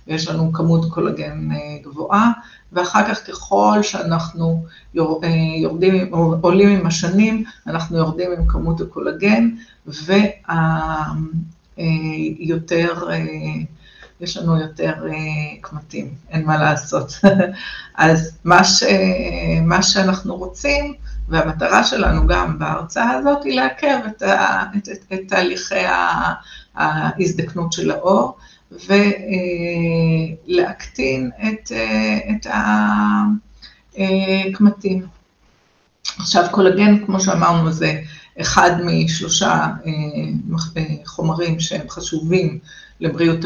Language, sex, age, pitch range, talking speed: Hebrew, female, 50-69, 160-195 Hz, 85 wpm